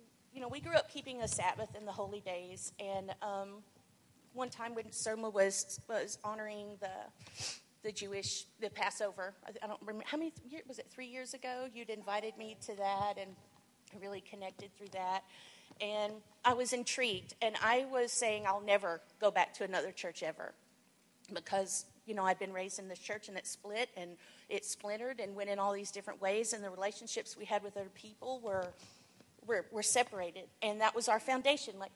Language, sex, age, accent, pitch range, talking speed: English, female, 40-59, American, 200-240 Hz, 195 wpm